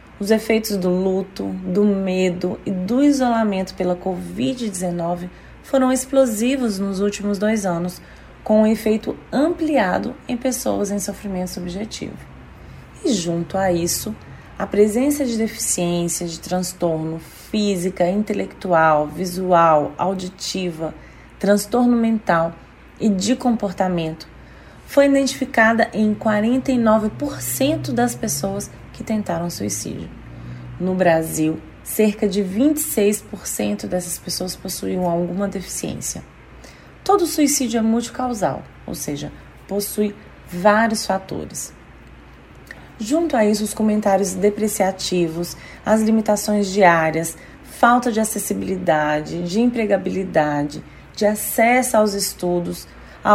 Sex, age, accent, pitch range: female, 20-39, Brazilian, 180-225 Hz